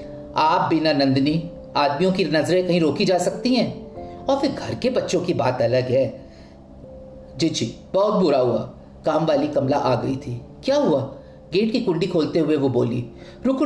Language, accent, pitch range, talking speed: Hindi, native, 120-175 Hz, 170 wpm